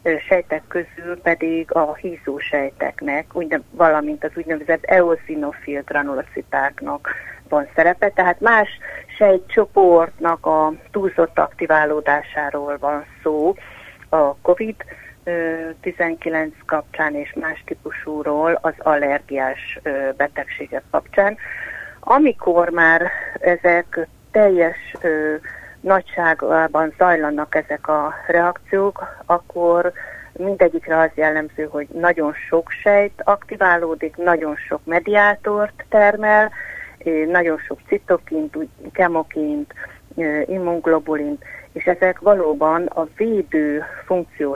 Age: 30-49